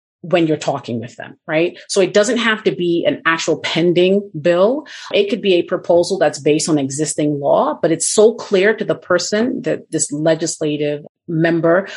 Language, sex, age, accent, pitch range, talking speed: English, female, 30-49, American, 155-190 Hz, 185 wpm